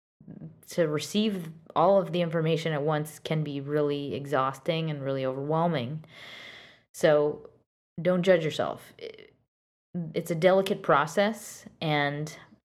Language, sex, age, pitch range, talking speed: English, female, 20-39, 150-175 Hz, 115 wpm